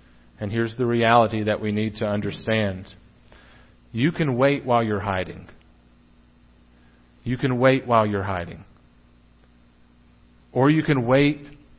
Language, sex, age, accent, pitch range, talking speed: English, male, 40-59, American, 90-135 Hz, 125 wpm